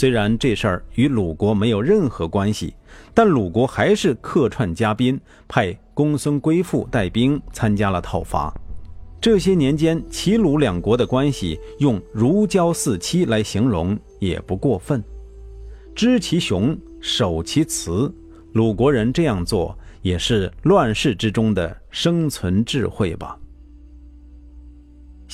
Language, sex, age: Chinese, male, 50-69